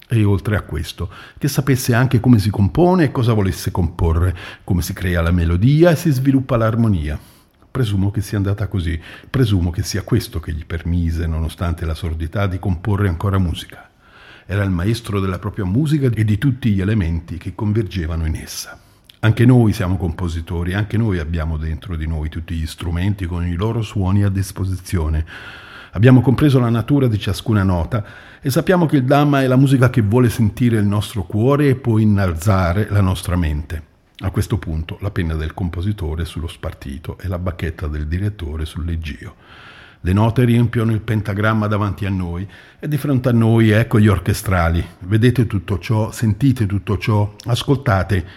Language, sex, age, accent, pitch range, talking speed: Italian, male, 50-69, native, 85-110 Hz, 175 wpm